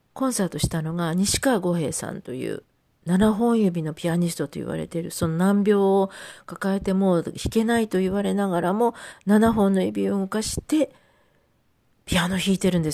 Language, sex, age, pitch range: Japanese, female, 40-59, 170-215 Hz